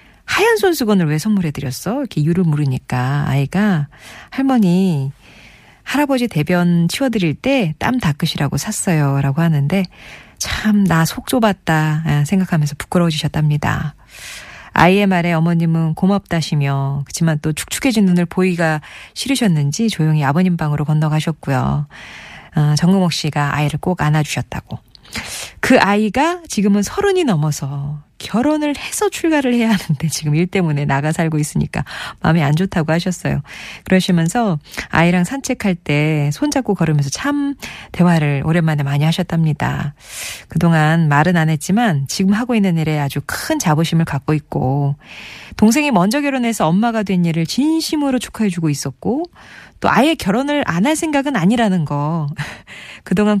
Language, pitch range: Korean, 150-205 Hz